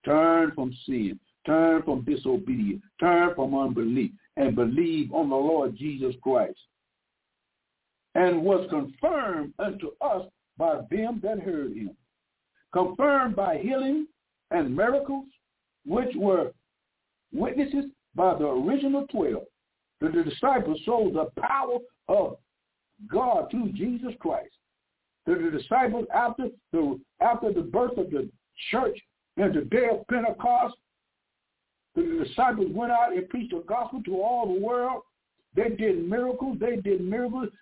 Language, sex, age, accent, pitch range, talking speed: English, male, 60-79, American, 195-280 Hz, 130 wpm